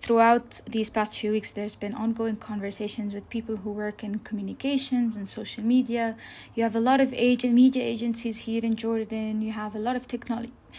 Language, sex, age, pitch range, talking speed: English, female, 20-39, 210-235 Hz, 190 wpm